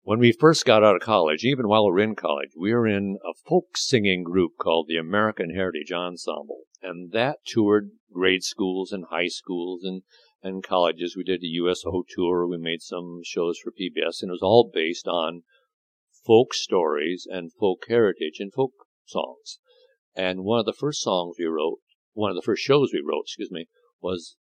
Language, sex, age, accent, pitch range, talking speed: English, male, 60-79, American, 90-155 Hz, 195 wpm